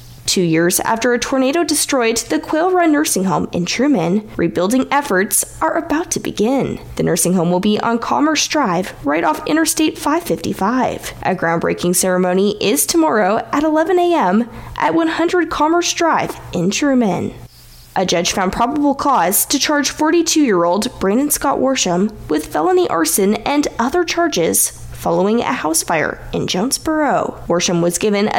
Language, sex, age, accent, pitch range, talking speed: English, female, 10-29, American, 185-310 Hz, 155 wpm